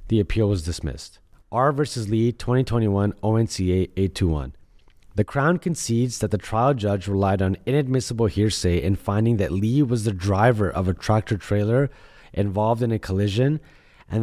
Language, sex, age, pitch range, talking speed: English, male, 30-49, 95-120 Hz, 155 wpm